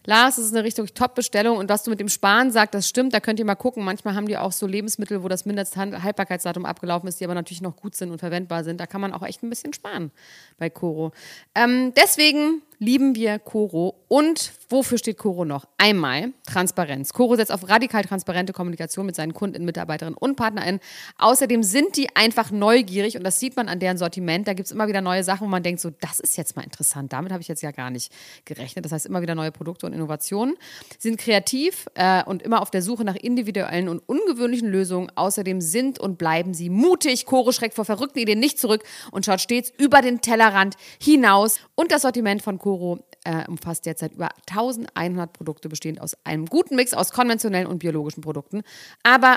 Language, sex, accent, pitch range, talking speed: German, female, German, 175-230 Hz, 210 wpm